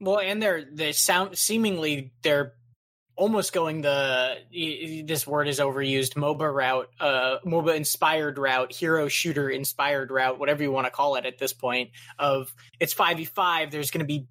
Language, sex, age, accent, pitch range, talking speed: English, male, 20-39, American, 130-165 Hz, 175 wpm